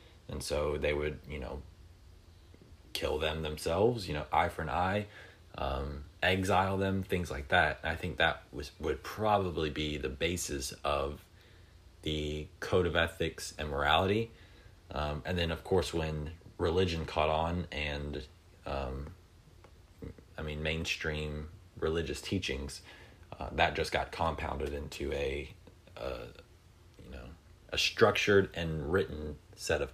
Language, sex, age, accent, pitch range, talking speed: English, male, 30-49, American, 75-90 Hz, 140 wpm